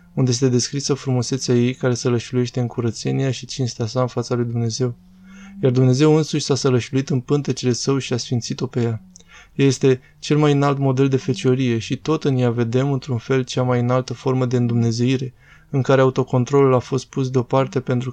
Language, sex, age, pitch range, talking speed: Romanian, male, 20-39, 120-140 Hz, 190 wpm